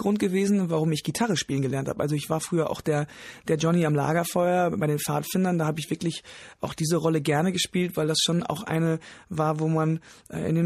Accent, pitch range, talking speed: German, 155-185 Hz, 225 wpm